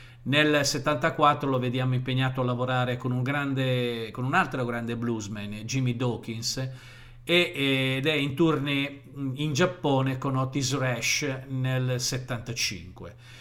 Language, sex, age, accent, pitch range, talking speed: Italian, male, 50-69, native, 120-140 Hz, 130 wpm